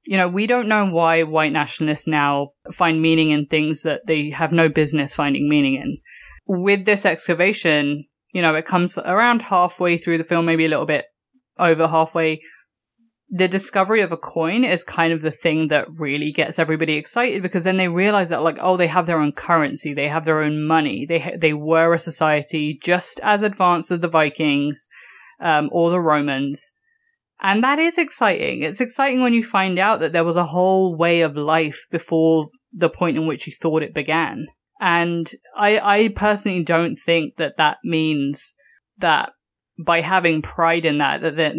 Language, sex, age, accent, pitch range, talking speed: English, female, 20-39, British, 155-185 Hz, 190 wpm